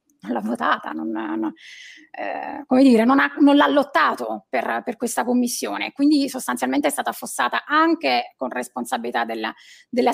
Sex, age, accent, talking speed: female, 30-49, native, 160 wpm